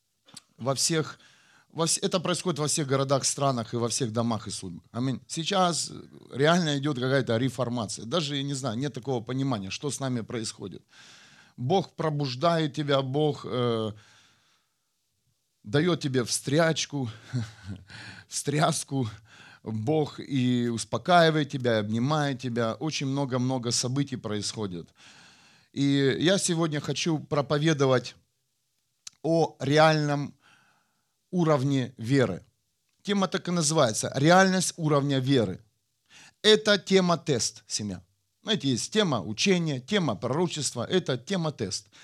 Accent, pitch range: native, 125-170 Hz